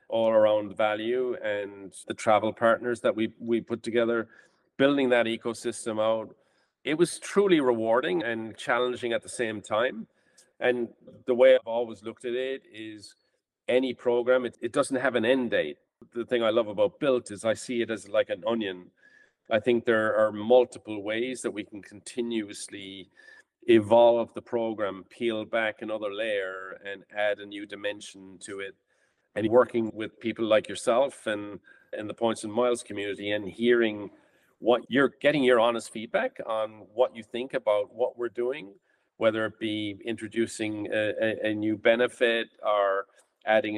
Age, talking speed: 40-59, 165 wpm